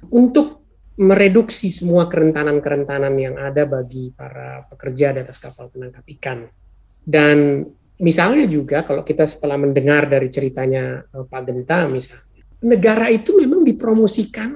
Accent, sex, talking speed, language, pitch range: native, male, 125 wpm, Indonesian, 150-225 Hz